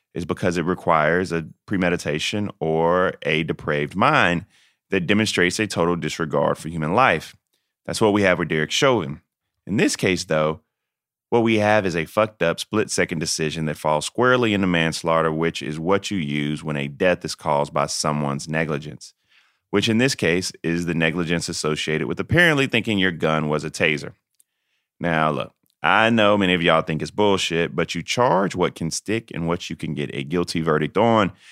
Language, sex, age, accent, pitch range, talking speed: English, male, 30-49, American, 80-100 Hz, 185 wpm